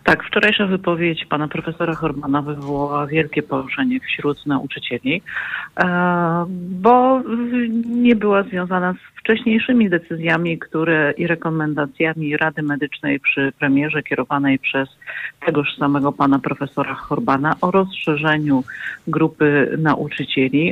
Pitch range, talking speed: 140-165 Hz, 105 wpm